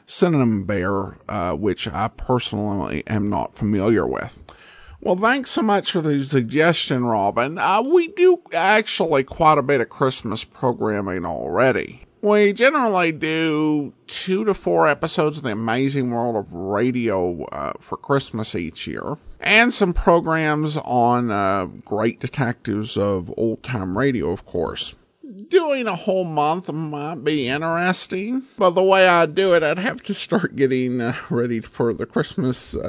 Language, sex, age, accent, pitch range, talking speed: English, male, 50-69, American, 120-170 Hz, 150 wpm